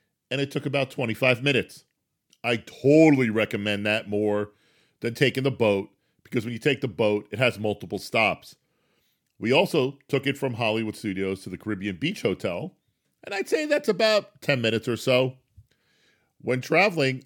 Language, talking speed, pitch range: English, 165 wpm, 105-135 Hz